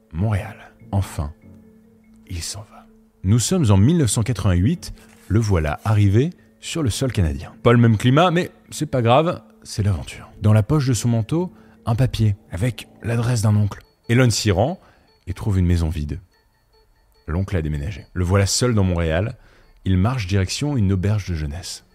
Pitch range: 95-120 Hz